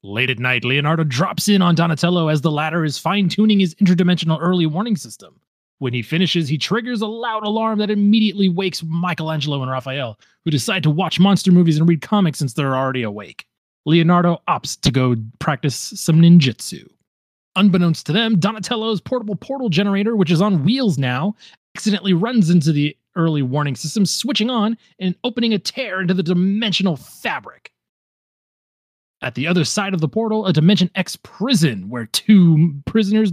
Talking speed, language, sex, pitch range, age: 170 wpm, English, male, 155-210 Hz, 30-49